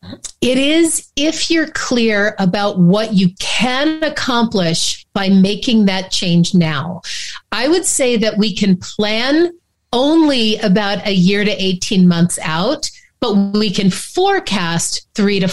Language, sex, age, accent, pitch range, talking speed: English, female, 40-59, American, 185-240 Hz, 140 wpm